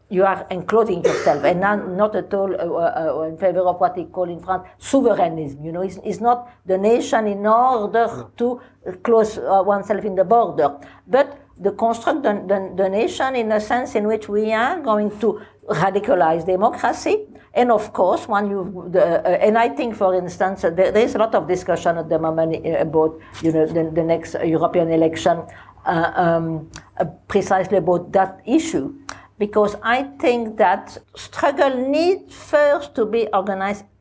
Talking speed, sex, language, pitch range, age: 180 wpm, female, English, 180-225 Hz, 60-79